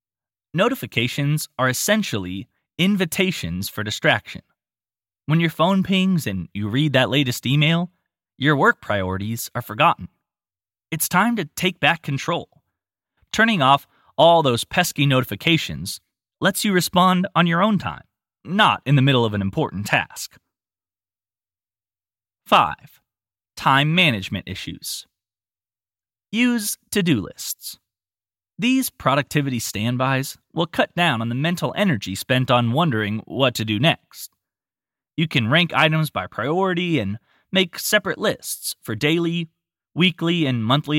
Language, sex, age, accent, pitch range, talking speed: English, male, 20-39, American, 105-170 Hz, 125 wpm